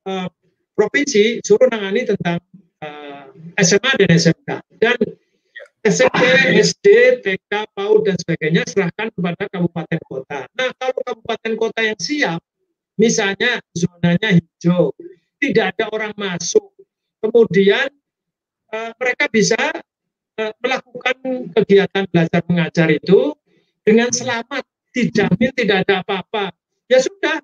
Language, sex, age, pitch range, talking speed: Indonesian, male, 50-69, 195-270 Hz, 100 wpm